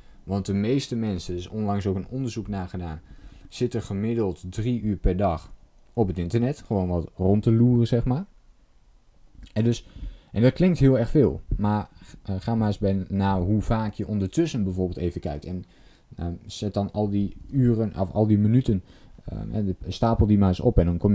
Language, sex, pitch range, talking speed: Dutch, male, 90-115 Hz, 195 wpm